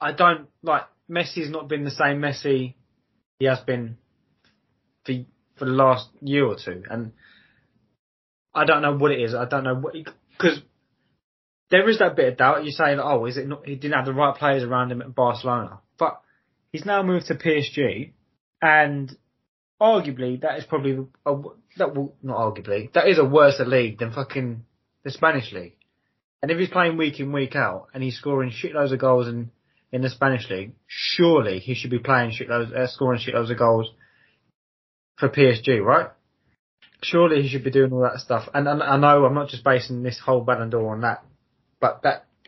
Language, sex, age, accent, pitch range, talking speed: English, male, 20-39, British, 120-145 Hz, 190 wpm